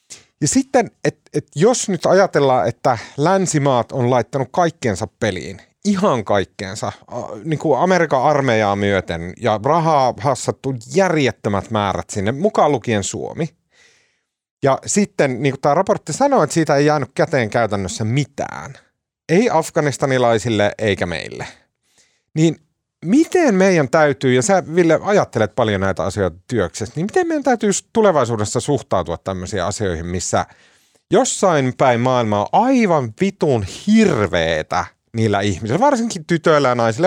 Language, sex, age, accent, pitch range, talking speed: Finnish, male, 30-49, native, 110-180 Hz, 135 wpm